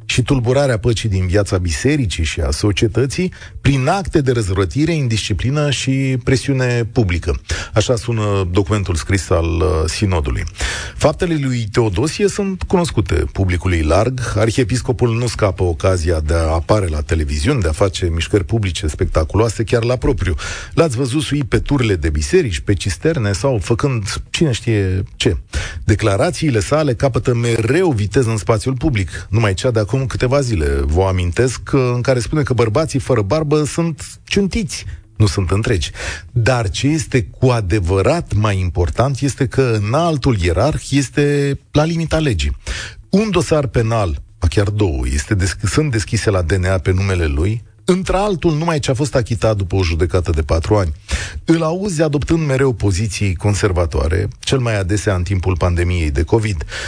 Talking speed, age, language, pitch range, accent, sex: 150 wpm, 40-59, Romanian, 95-135 Hz, native, male